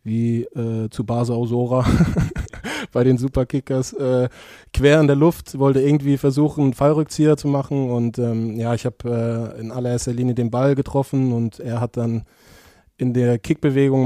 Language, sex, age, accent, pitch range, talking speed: German, male, 20-39, German, 115-135 Hz, 165 wpm